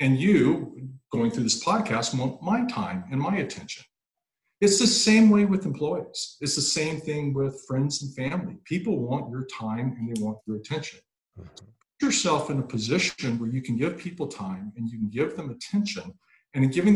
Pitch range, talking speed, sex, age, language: 120-180 Hz, 195 wpm, male, 50-69, English